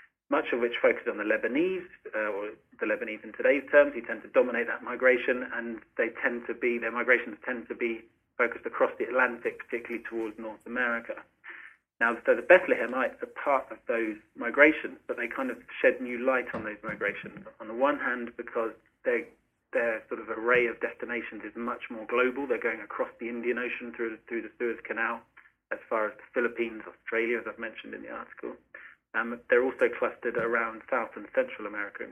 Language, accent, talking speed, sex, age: English, British, 200 wpm, male, 30-49